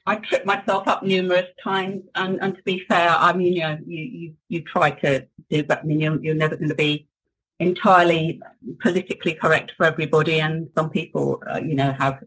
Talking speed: 205 wpm